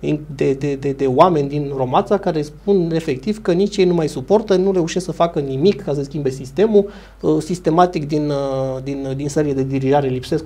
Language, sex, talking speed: Romanian, male, 190 wpm